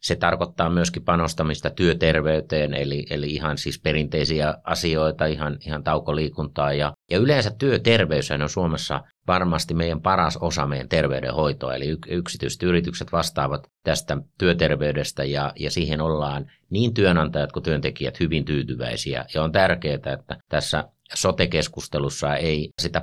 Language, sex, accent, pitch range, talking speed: Finnish, male, native, 75-90 Hz, 130 wpm